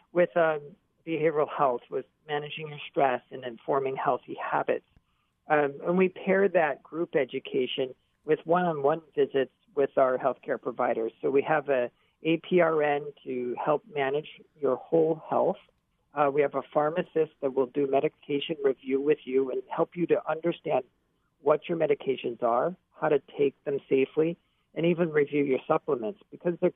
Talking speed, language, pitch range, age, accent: 155 wpm, English, 140-175 Hz, 50-69, American